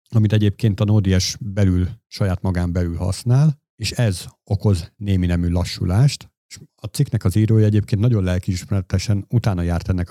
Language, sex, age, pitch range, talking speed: Hungarian, male, 50-69, 95-115 Hz, 155 wpm